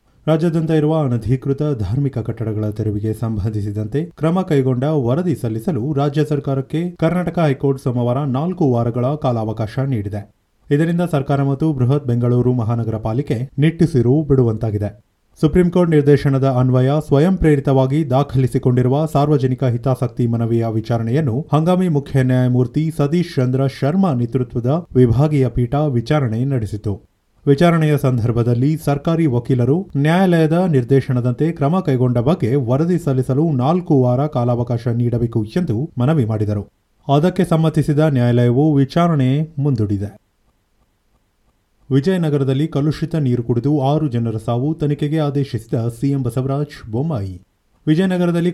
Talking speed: 105 wpm